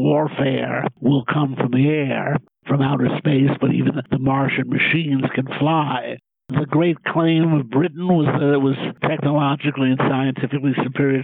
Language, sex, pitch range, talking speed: English, male, 130-150 Hz, 155 wpm